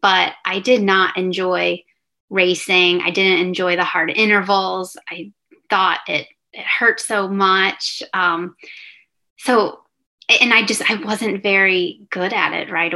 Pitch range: 175-205 Hz